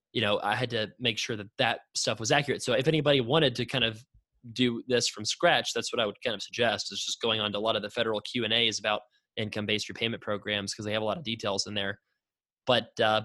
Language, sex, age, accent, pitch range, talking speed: English, male, 20-39, American, 105-125 Hz, 265 wpm